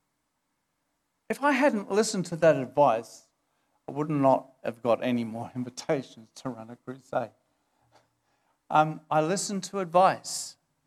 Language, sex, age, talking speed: English, male, 50-69, 135 wpm